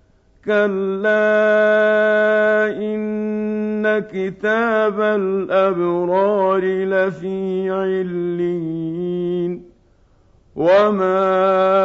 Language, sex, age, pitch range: Arabic, male, 50-69, 160-195 Hz